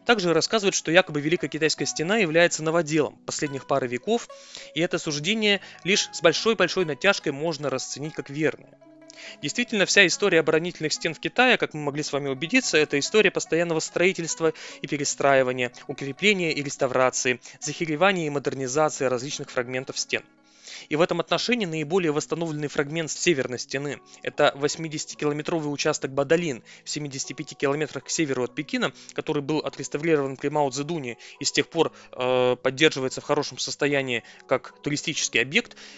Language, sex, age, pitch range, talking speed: Russian, male, 20-39, 140-170 Hz, 145 wpm